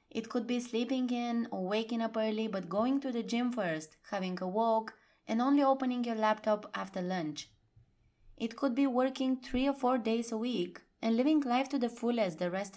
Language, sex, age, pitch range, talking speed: English, female, 20-39, 185-235 Hz, 200 wpm